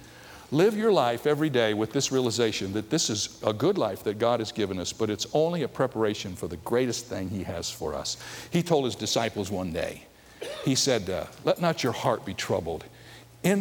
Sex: male